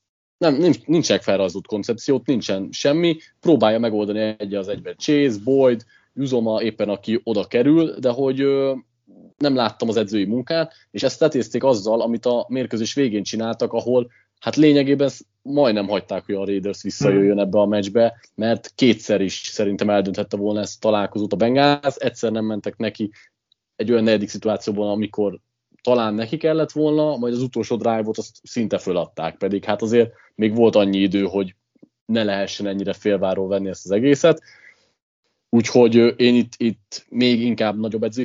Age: 30-49